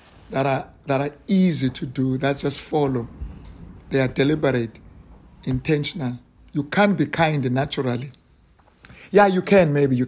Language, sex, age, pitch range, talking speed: English, male, 60-79, 125-160 Hz, 150 wpm